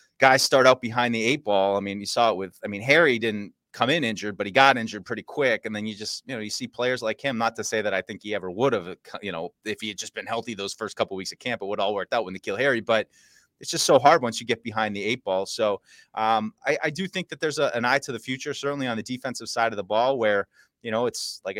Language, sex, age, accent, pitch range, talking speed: English, male, 30-49, American, 105-135 Hz, 300 wpm